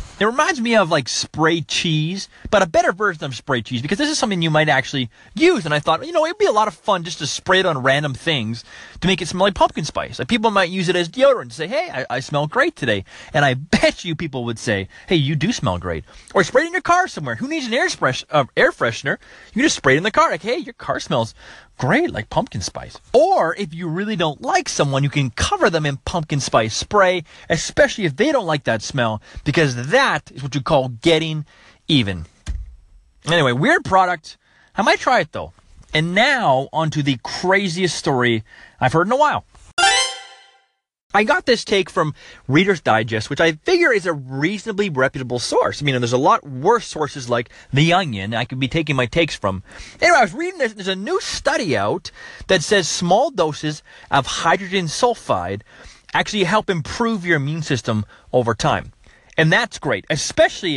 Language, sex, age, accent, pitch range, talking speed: English, male, 30-49, American, 135-195 Hz, 215 wpm